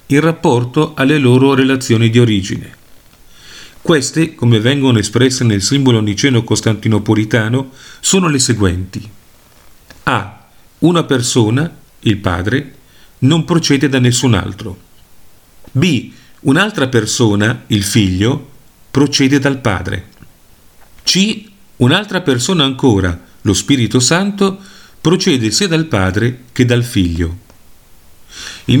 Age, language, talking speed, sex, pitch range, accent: 40-59, Italian, 105 wpm, male, 105-140 Hz, native